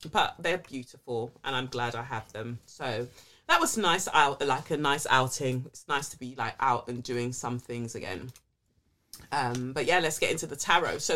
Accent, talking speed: British, 205 wpm